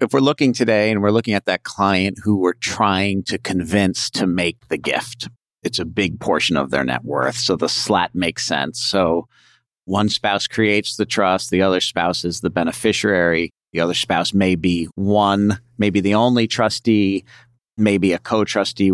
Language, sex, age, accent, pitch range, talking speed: English, male, 50-69, American, 85-110 Hz, 185 wpm